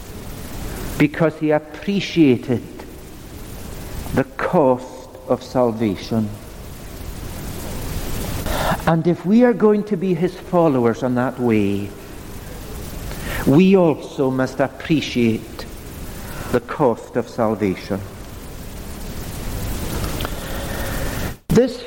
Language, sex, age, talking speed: English, male, 60-79, 75 wpm